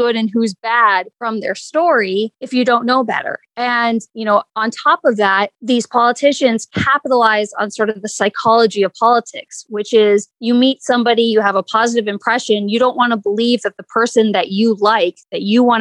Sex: female